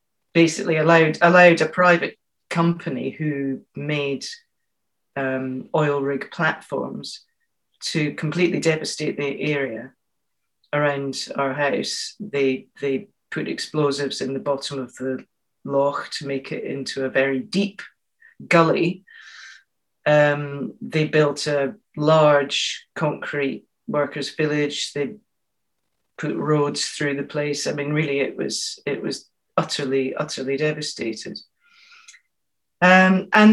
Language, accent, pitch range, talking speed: English, British, 135-175 Hz, 115 wpm